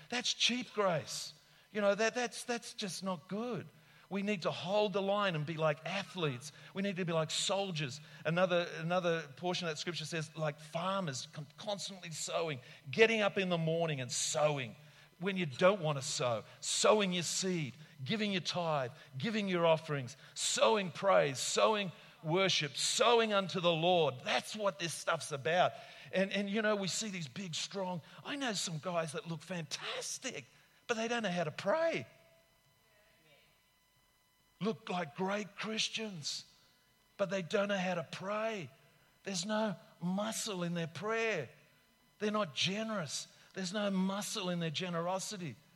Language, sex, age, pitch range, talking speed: English, male, 40-59, 155-200 Hz, 160 wpm